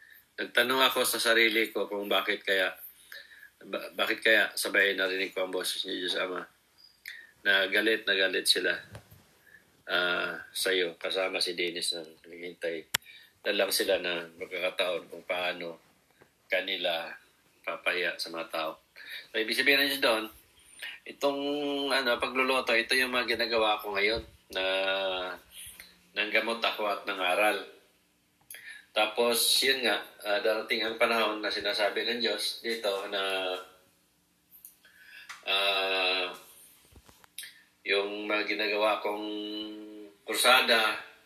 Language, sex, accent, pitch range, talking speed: Filipino, male, native, 95-115 Hz, 120 wpm